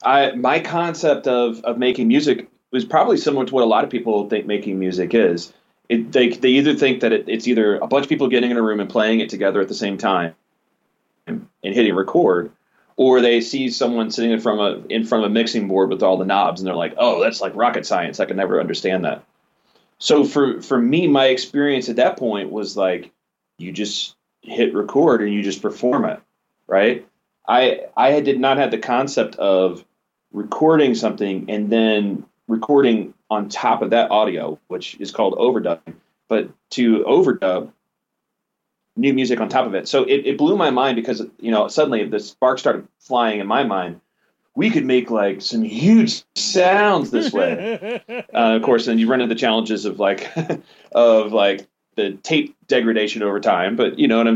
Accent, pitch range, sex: American, 105-135 Hz, male